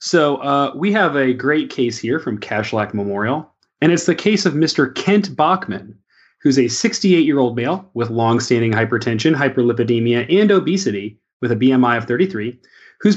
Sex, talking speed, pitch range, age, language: male, 175 wpm, 120-175 Hz, 30-49, English